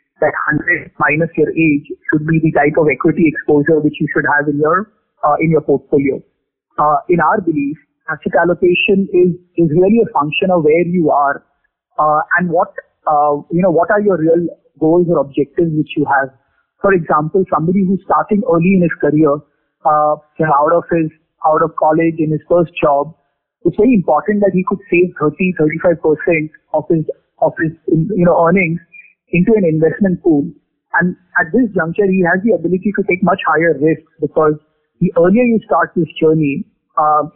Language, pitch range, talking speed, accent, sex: English, 155-190 Hz, 185 wpm, Indian, male